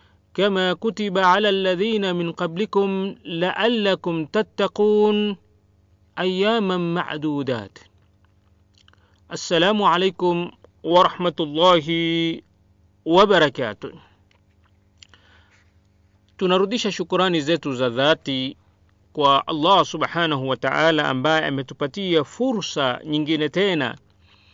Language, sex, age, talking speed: Swahili, male, 40-59, 65 wpm